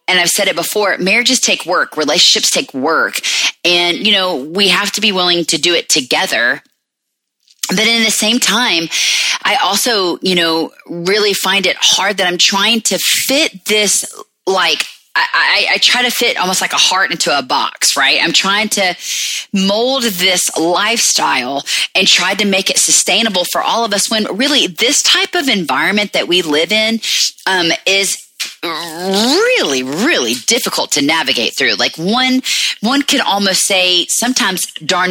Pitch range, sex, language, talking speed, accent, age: 175-230 Hz, female, English, 170 wpm, American, 30-49